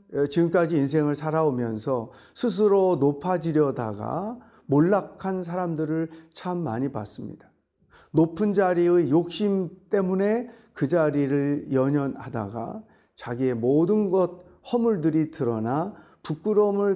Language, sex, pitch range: Korean, male, 120-180 Hz